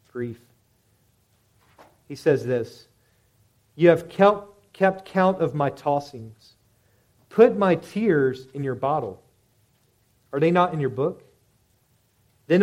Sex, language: male, English